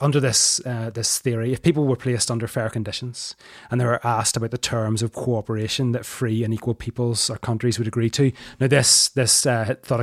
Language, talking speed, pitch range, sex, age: English, 215 wpm, 115-135 Hz, male, 30-49